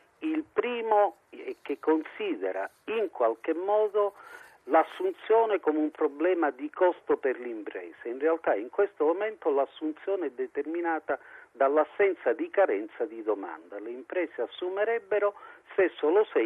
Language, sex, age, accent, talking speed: Italian, male, 50-69, native, 130 wpm